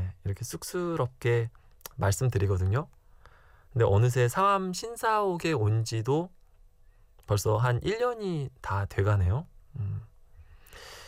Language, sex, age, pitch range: Korean, male, 20-39, 95-140 Hz